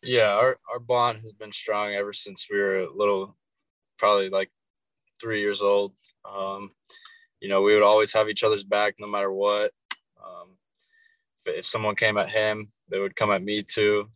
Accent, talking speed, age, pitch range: American, 185 wpm, 20-39, 100-125 Hz